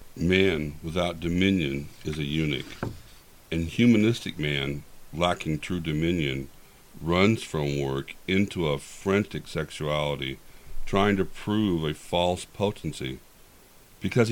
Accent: American